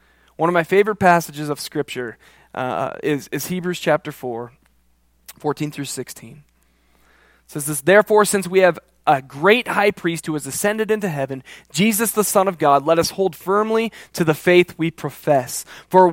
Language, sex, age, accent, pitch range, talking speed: English, male, 20-39, American, 140-205 Hz, 175 wpm